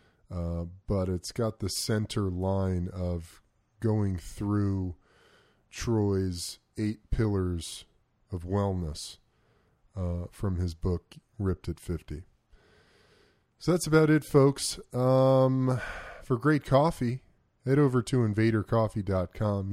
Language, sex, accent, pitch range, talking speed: English, male, American, 95-120 Hz, 105 wpm